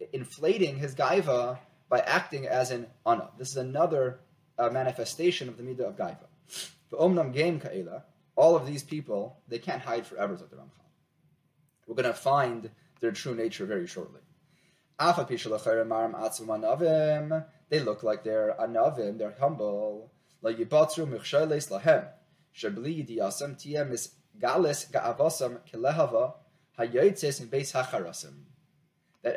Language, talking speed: English, 95 wpm